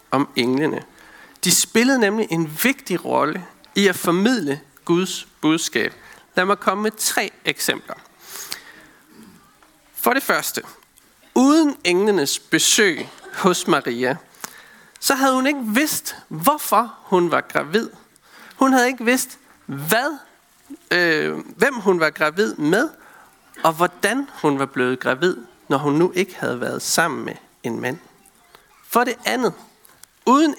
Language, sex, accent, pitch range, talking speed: Danish, male, native, 175-245 Hz, 130 wpm